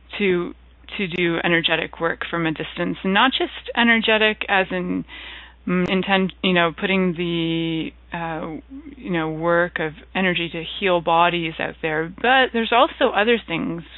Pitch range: 165-195 Hz